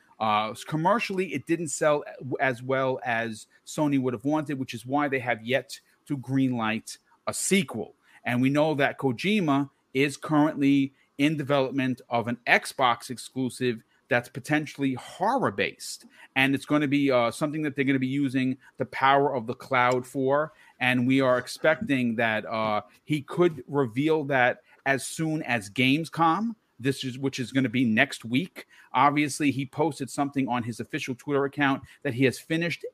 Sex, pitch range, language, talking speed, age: male, 125-150 Hz, English, 170 wpm, 40-59